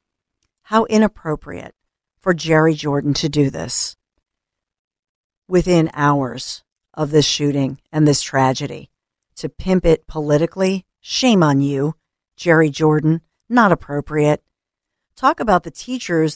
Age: 50-69